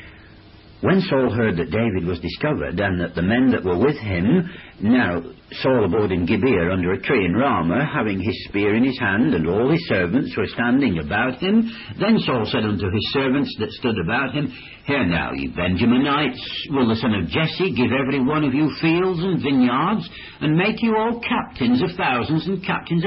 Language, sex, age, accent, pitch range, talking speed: English, male, 60-79, British, 90-150 Hz, 195 wpm